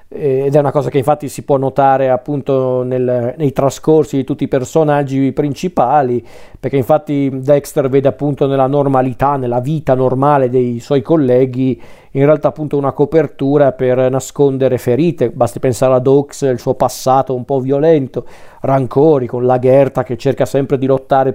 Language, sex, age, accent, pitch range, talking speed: Italian, male, 40-59, native, 125-140 Hz, 165 wpm